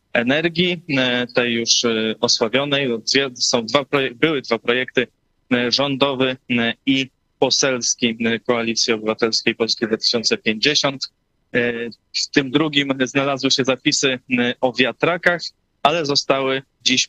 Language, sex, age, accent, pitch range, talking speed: Polish, male, 20-39, native, 115-140 Hz, 90 wpm